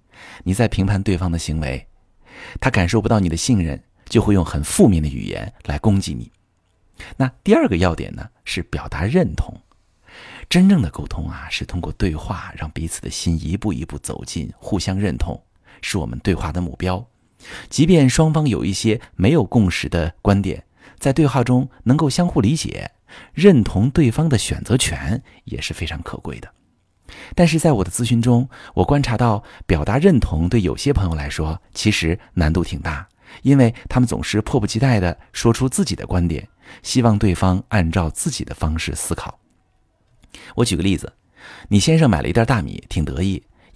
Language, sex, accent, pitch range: Chinese, male, native, 85-120 Hz